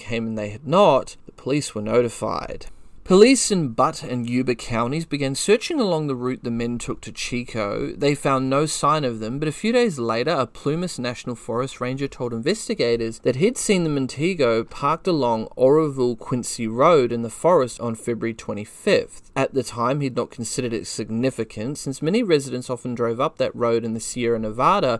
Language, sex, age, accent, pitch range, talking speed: English, male, 30-49, Australian, 115-150 Hz, 185 wpm